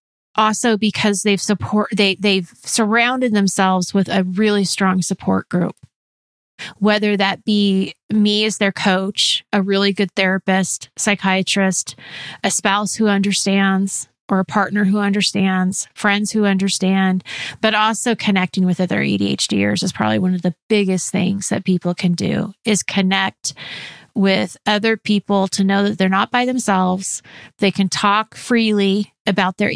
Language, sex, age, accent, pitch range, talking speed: English, female, 30-49, American, 185-210 Hz, 145 wpm